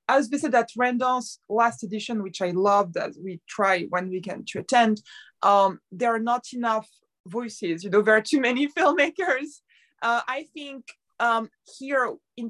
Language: English